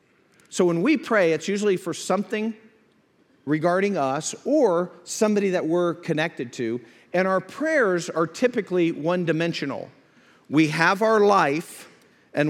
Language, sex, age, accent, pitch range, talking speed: English, male, 50-69, American, 140-175 Hz, 130 wpm